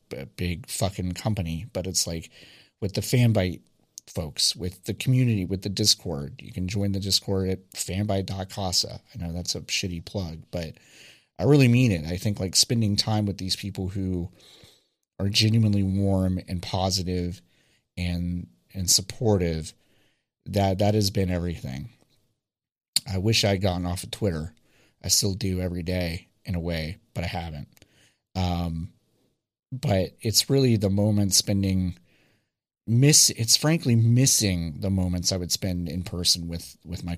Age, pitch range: 30-49, 90-105 Hz